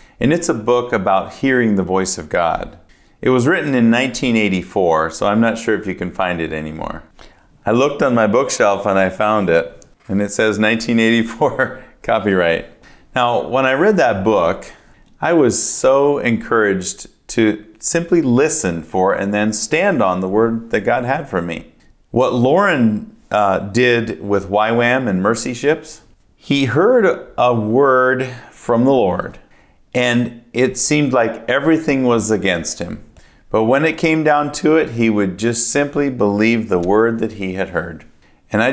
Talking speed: 165 wpm